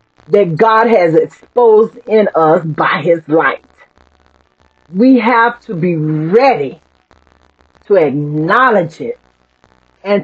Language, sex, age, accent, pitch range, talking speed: English, female, 40-59, American, 170-265 Hz, 105 wpm